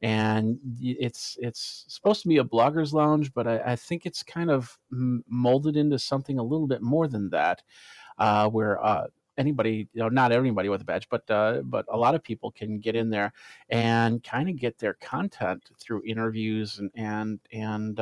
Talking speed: 195 wpm